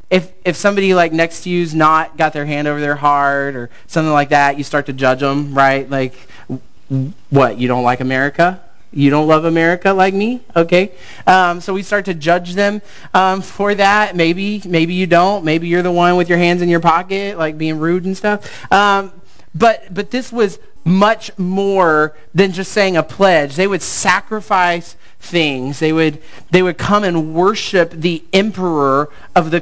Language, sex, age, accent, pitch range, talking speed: English, male, 30-49, American, 155-190 Hz, 190 wpm